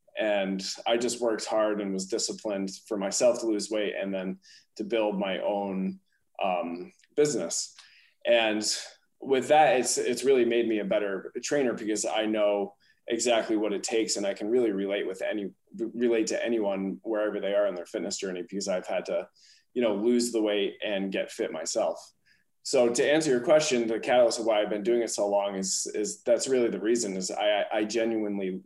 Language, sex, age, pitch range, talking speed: English, male, 20-39, 95-120 Hz, 195 wpm